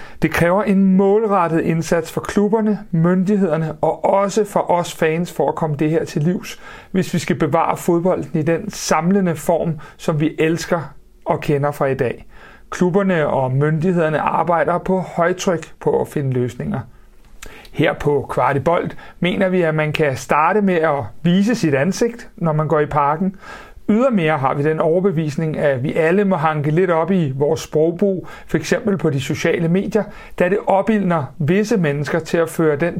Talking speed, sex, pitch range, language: 175 wpm, male, 150-195 Hz, Danish